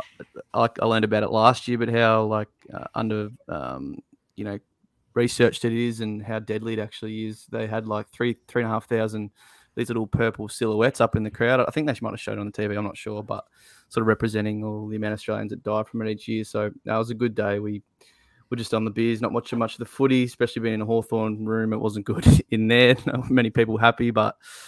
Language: English